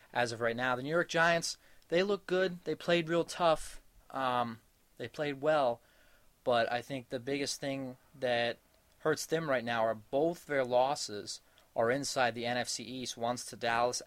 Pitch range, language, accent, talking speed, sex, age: 115-145 Hz, English, American, 180 wpm, male, 20-39